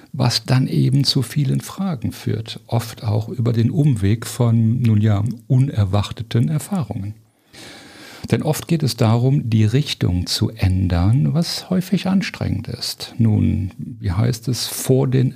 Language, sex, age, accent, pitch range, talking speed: German, male, 50-69, German, 105-130 Hz, 140 wpm